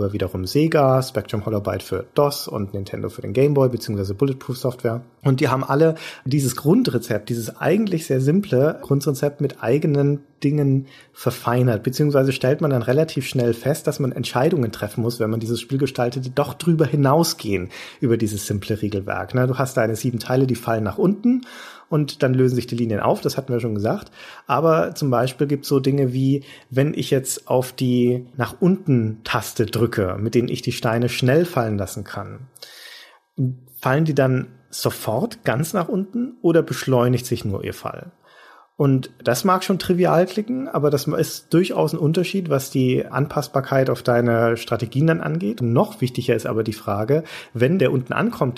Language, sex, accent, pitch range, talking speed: German, male, German, 120-150 Hz, 175 wpm